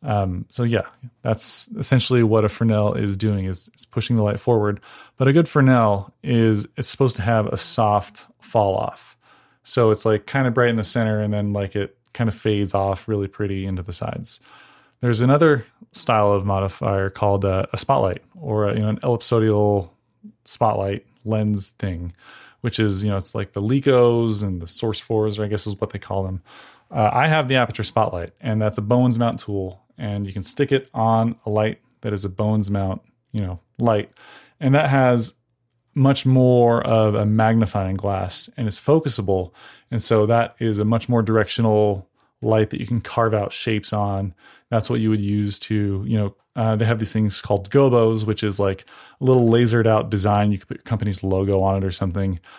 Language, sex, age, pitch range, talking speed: English, male, 20-39, 100-120 Hz, 205 wpm